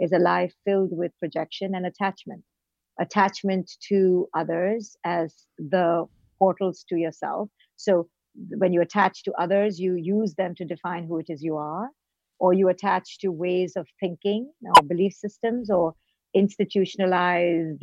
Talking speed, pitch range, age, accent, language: 150 wpm, 180-215 Hz, 50-69, Indian, English